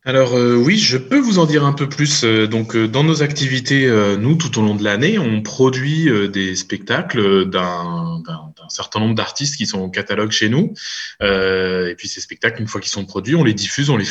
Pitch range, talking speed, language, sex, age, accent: 100-130 Hz, 235 wpm, French, male, 20-39, French